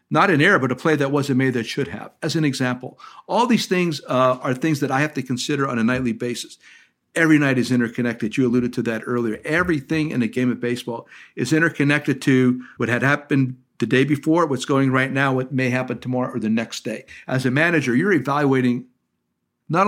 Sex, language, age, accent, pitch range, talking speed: male, English, 50-69, American, 125-155 Hz, 215 wpm